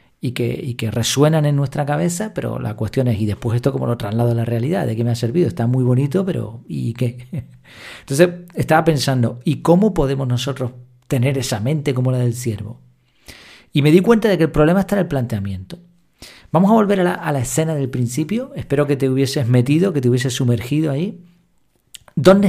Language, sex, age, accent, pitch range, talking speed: Spanish, male, 40-59, Argentinian, 125-170 Hz, 210 wpm